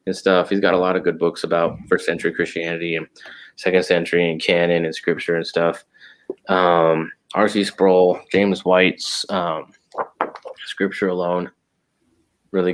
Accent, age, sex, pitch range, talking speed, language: American, 20-39, male, 85-100 Hz, 145 wpm, English